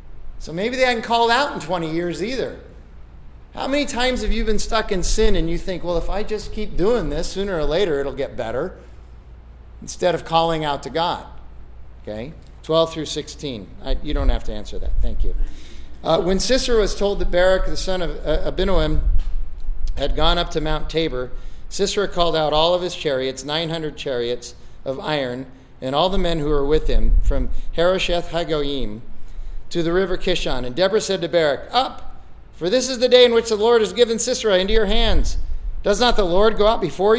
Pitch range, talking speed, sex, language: 135-190 Hz, 205 wpm, male, English